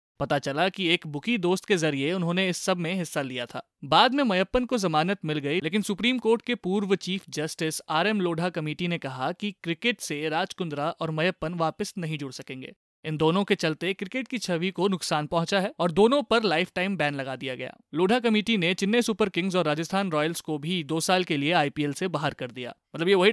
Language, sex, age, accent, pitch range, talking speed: Hindi, male, 30-49, native, 155-210 Hz, 225 wpm